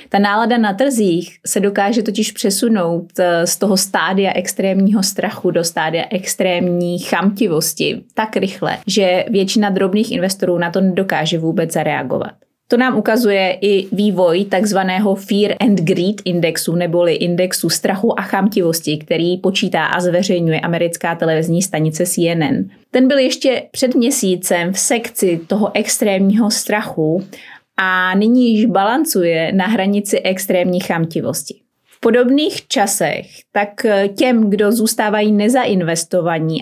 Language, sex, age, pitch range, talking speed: Czech, female, 20-39, 175-215 Hz, 125 wpm